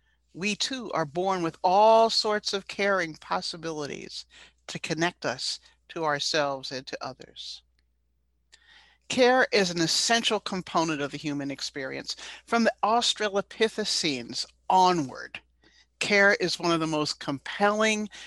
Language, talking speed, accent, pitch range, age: English, 125 wpm, American, 155-220 Hz, 50-69